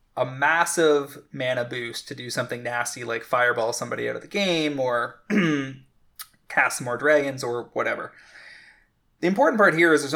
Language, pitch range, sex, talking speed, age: English, 120-145 Hz, male, 165 wpm, 20-39